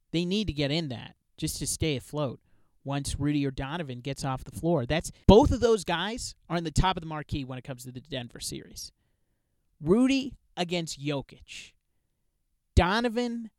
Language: English